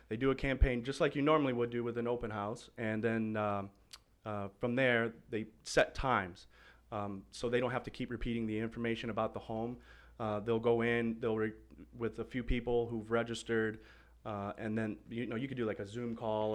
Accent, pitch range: American, 100-120 Hz